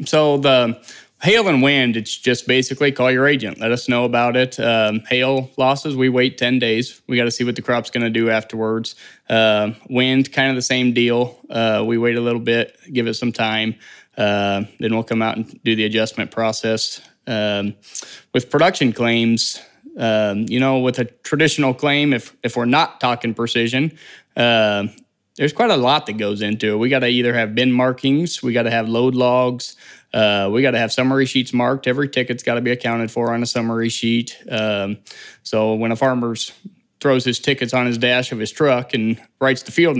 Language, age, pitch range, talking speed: English, 20-39, 115-130 Hz, 205 wpm